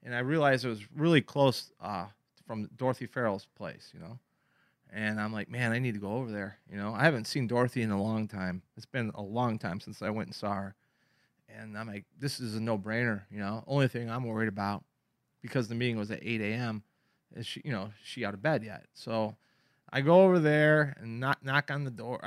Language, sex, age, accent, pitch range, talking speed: English, male, 30-49, American, 110-140 Hz, 230 wpm